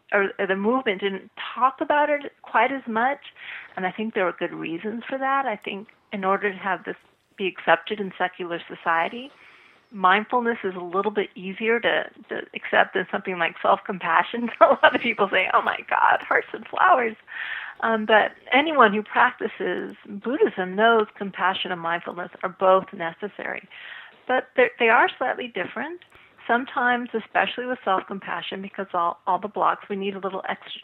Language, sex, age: English, female, 40-59